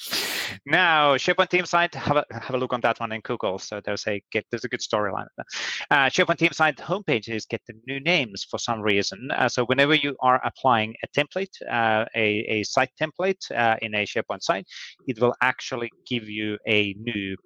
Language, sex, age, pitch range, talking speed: English, male, 30-49, 105-140 Hz, 205 wpm